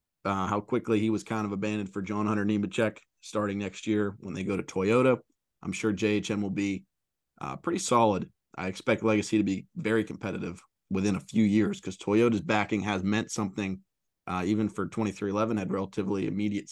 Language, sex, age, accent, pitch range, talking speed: English, male, 20-39, American, 100-115 Hz, 185 wpm